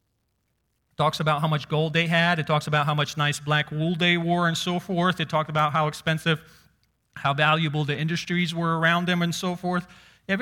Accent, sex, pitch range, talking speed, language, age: American, male, 140-175 Hz, 205 wpm, English, 40-59